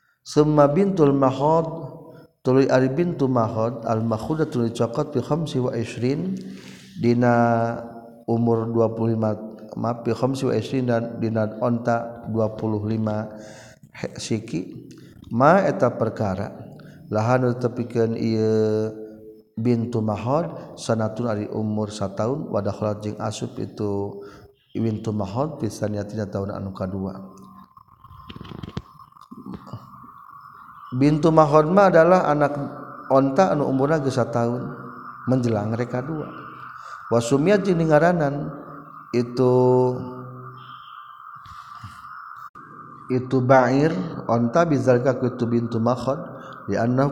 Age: 50-69